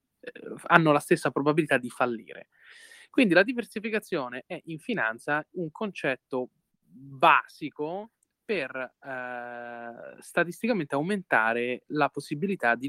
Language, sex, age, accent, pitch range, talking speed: Italian, male, 20-39, native, 130-180 Hz, 100 wpm